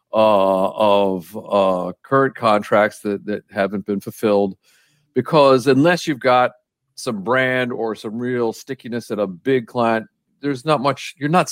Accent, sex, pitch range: American, male, 105-130 Hz